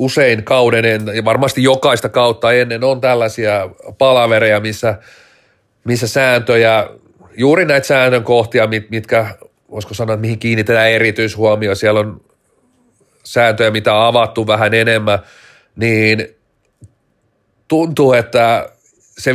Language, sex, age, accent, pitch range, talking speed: Finnish, male, 30-49, native, 110-130 Hz, 115 wpm